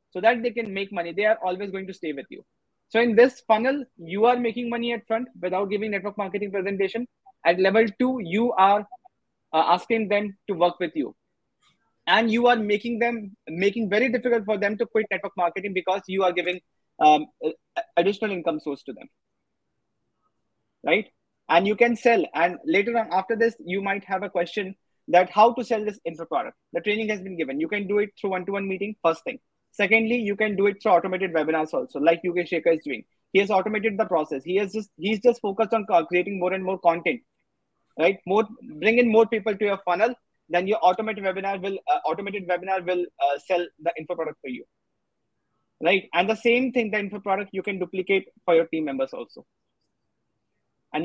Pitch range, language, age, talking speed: 175-225 Hz, Hindi, 20-39, 210 wpm